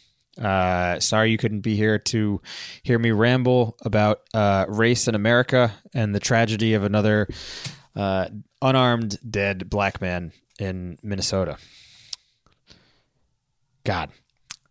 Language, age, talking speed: English, 20-39, 115 wpm